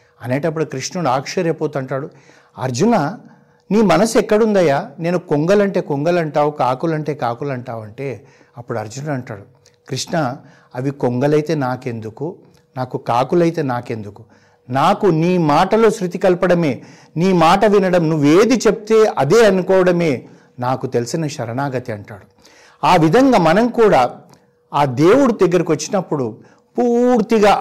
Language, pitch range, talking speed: Telugu, 130-180 Hz, 110 wpm